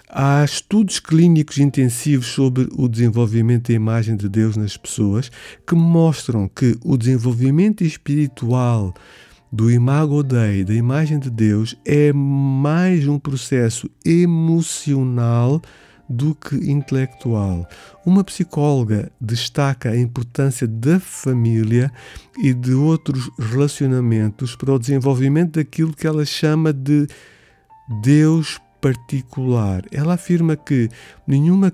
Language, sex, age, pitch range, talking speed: Portuguese, male, 50-69, 115-145 Hz, 110 wpm